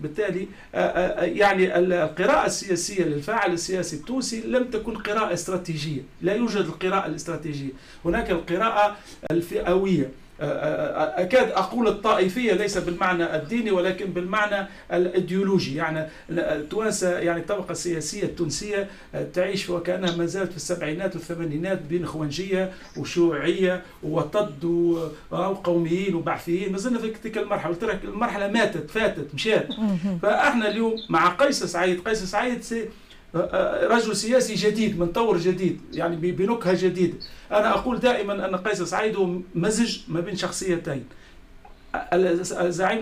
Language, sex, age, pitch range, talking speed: Arabic, male, 50-69, 170-210 Hz, 110 wpm